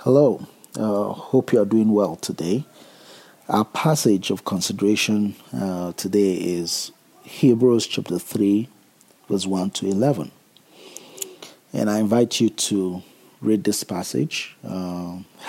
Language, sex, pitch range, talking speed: English, male, 95-115 Hz, 125 wpm